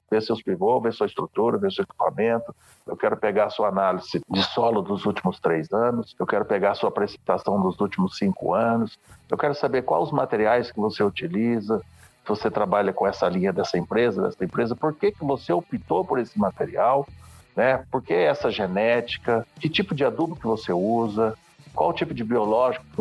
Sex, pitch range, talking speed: male, 110-140 Hz, 195 wpm